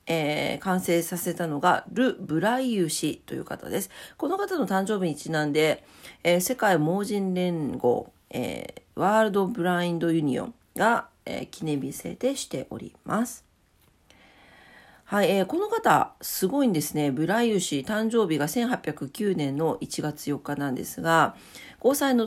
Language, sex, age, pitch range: Japanese, female, 40-59, 155-225 Hz